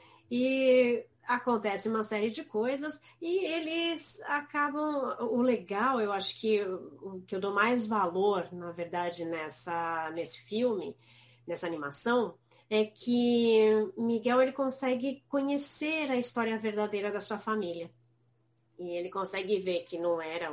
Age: 30-49